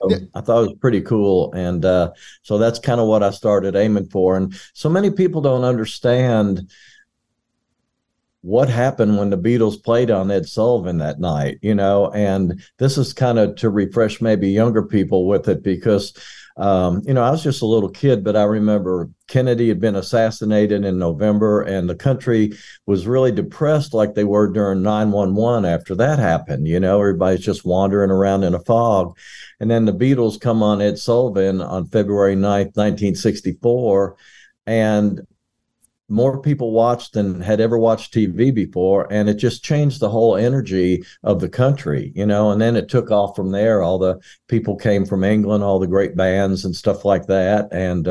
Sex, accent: male, American